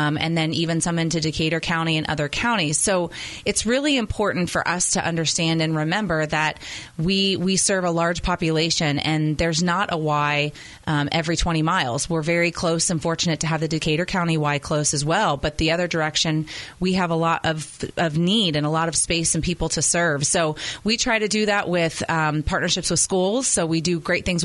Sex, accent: female, American